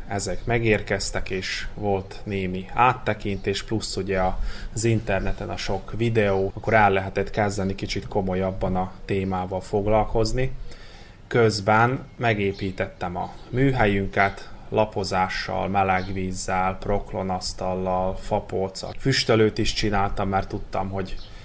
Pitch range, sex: 95-105 Hz, male